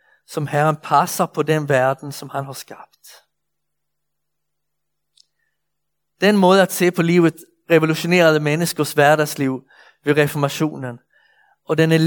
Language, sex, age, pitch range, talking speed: Danish, male, 60-79, 145-185 Hz, 120 wpm